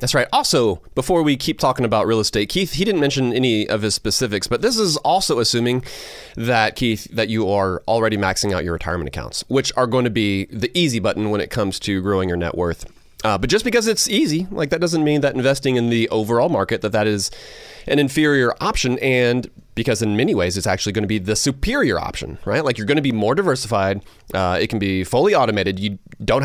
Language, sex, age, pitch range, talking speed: English, male, 30-49, 100-135 Hz, 230 wpm